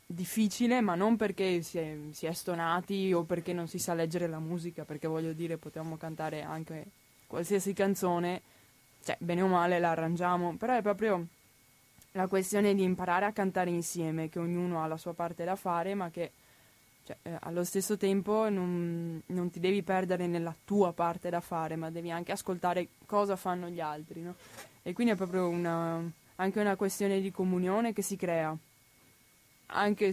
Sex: female